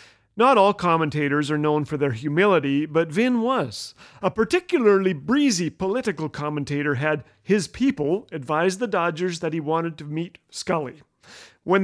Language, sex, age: English, male, 40-59